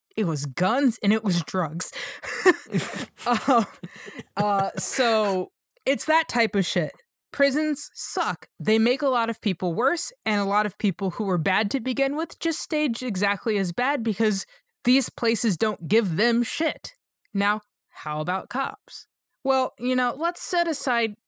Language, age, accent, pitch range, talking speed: English, 20-39, American, 185-250 Hz, 160 wpm